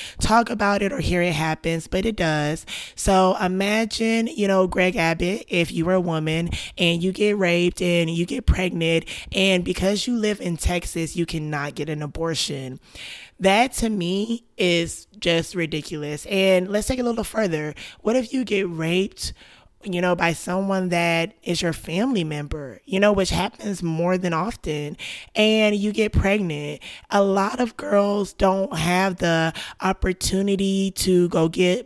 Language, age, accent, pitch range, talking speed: English, 20-39, American, 165-195 Hz, 165 wpm